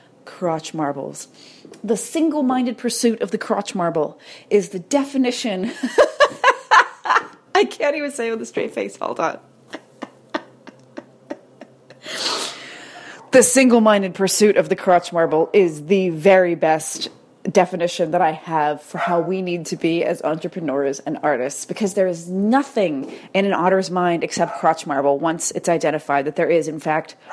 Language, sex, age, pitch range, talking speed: English, female, 30-49, 180-230 Hz, 145 wpm